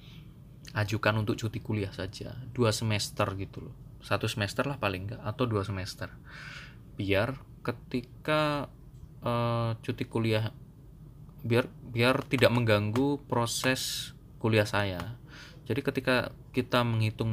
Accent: native